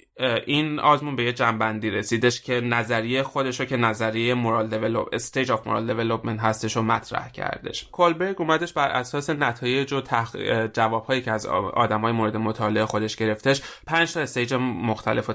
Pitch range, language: 115-135 Hz, Persian